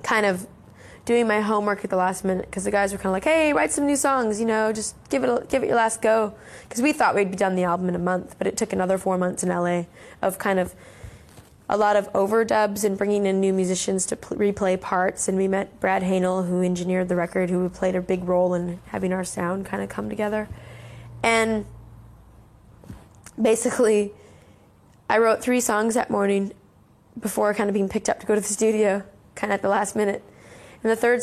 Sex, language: female, English